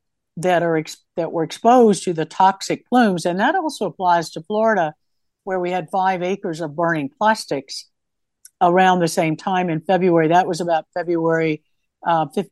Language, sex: English, female